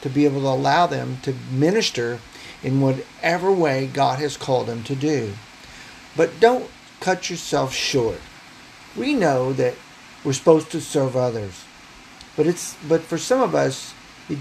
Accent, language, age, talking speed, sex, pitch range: American, English, 50-69, 155 wpm, male, 130-165 Hz